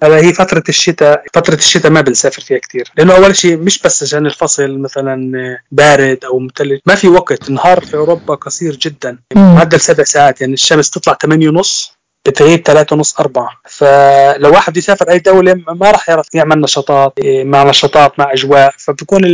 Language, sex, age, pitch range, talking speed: Arabic, male, 20-39, 140-165 Hz, 175 wpm